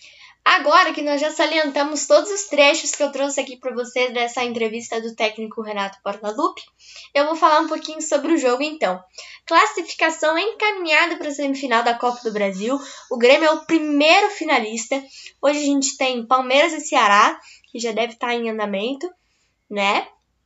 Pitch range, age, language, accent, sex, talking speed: 230-305 Hz, 10-29, Portuguese, Brazilian, female, 165 wpm